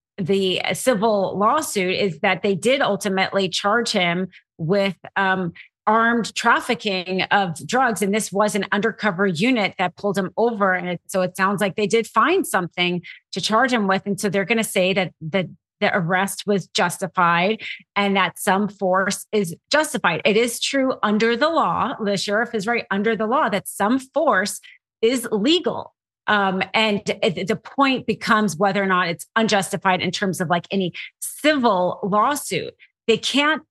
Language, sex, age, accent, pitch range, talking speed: English, female, 30-49, American, 190-230 Hz, 175 wpm